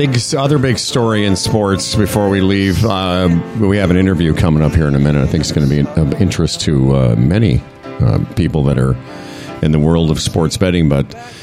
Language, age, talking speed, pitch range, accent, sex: English, 50-69, 220 wpm, 80-110 Hz, American, male